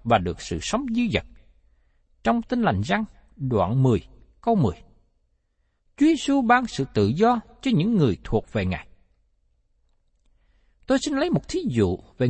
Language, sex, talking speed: Vietnamese, male, 155 wpm